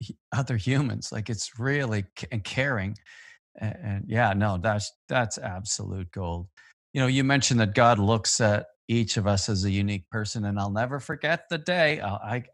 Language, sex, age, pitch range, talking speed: English, male, 40-59, 95-110 Hz, 165 wpm